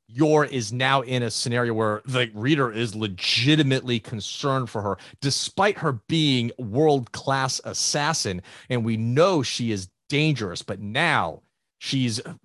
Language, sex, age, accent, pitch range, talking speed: English, male, 30-49, American, 110-150 Hz, 135 wpm